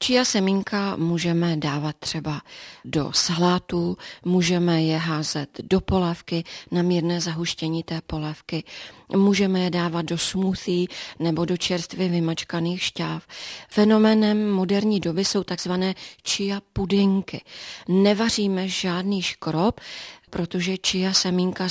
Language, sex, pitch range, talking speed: Czech, female, 170-195 Hz, 110 wpm